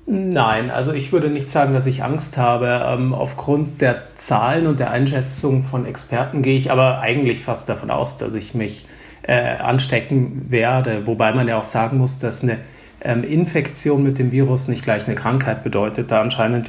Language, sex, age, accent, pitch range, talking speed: German, male, 30-49, German, 115-135 Hz, 185 wpm